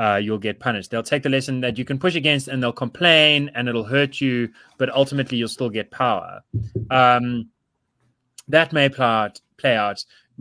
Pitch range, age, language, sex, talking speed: 120-145 Hz, 20-39, English, male, 185 wpm